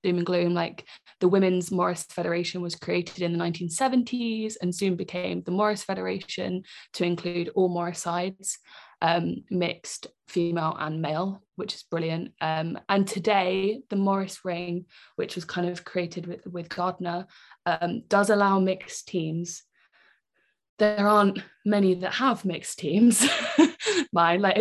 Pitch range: 175-210 Hz